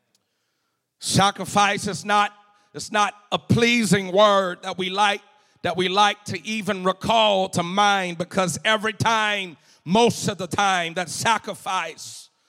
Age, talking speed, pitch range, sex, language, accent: 40-59, 135 wpm, 150-195 Hz, male, English, American